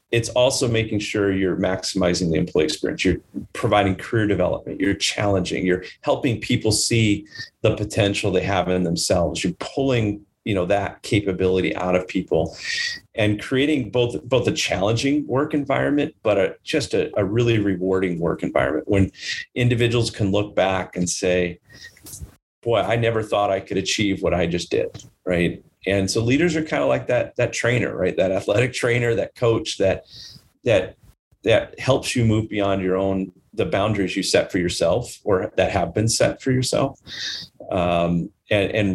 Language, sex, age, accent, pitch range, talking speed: English, male, 40-59, American, 95-115 Hz, 175 wpm